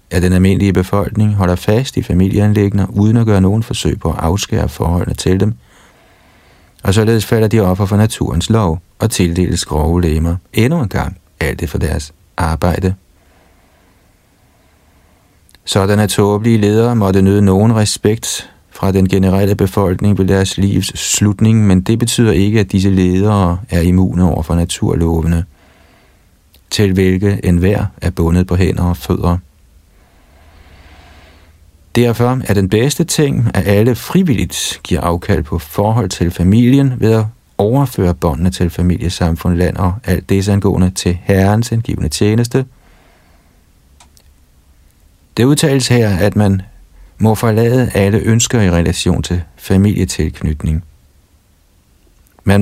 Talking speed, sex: 135 wpm, male